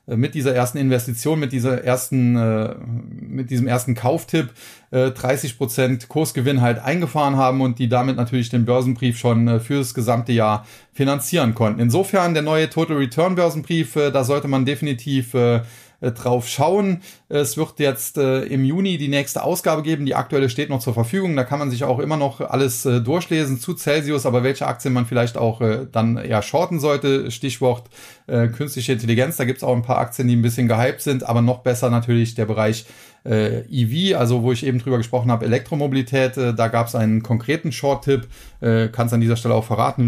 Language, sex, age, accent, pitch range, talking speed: German, male, 30-49, German, 120-145 Hz, 190 wpm